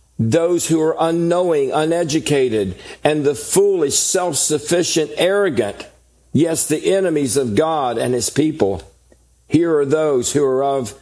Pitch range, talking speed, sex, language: 95-150 Hz, 130 wpm, male, English